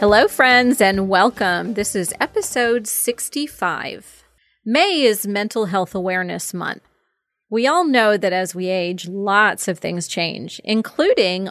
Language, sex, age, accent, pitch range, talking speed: English, female, 30-49, American, 185-245 Hz, 135 wpm